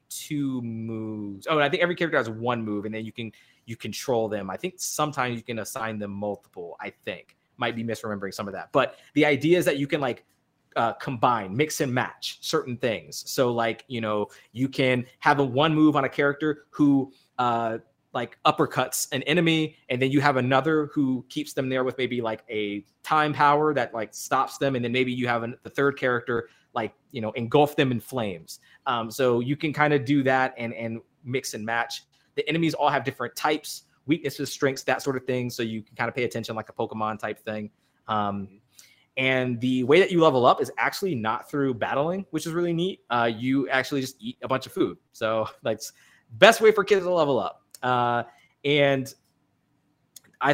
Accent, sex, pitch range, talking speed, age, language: American, male, 115-145 Hz, 210 wpm, 20-39, English